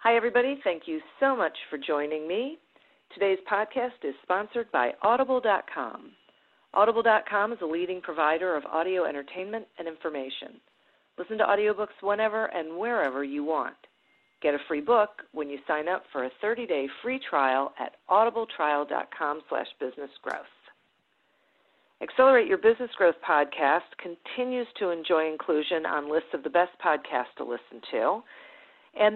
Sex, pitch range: female, 155-230 Hz